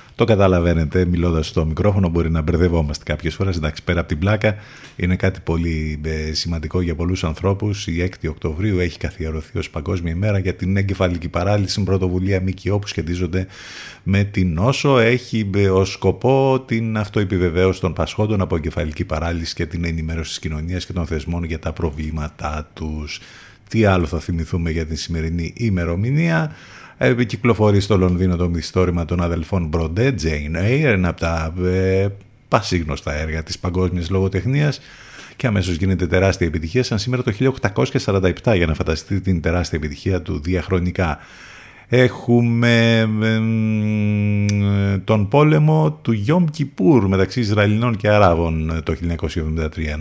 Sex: male